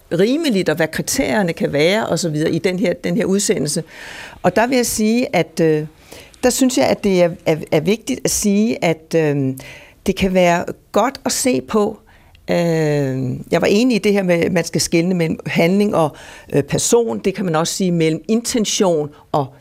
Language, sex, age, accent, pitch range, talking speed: Danish, female, 60-79, native, 170-220 Hz, 180 wpm